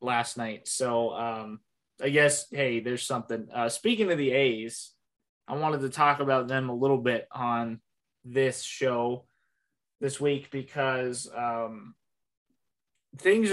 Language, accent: English, American